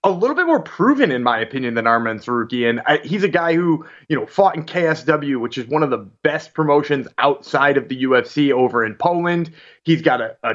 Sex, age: male, 20-39